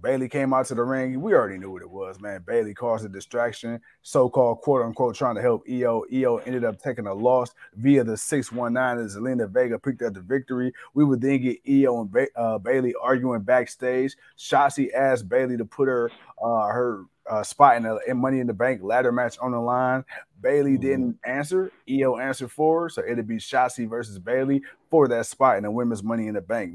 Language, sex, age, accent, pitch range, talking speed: English, male, 30-49, American, 120-140 Hz, 215 wpm